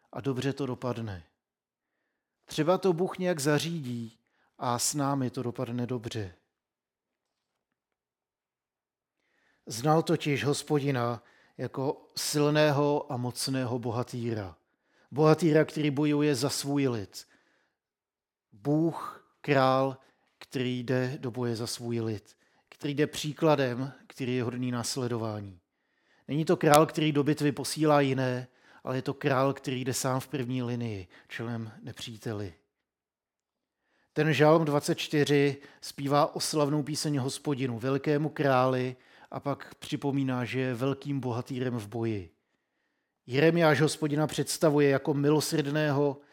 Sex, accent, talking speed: male, native, 115 wpm